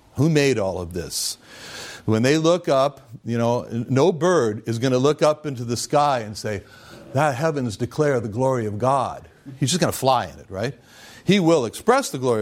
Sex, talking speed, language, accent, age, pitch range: male, 210 wpm, English, American, 60-79, 125-205 Hz